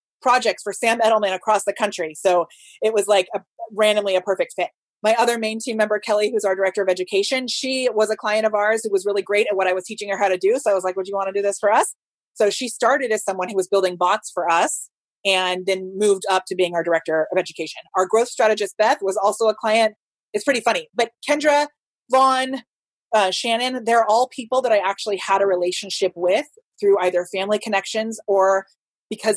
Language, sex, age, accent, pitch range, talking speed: English, female, 30-49, American, 185-220 Hz, 225 wpm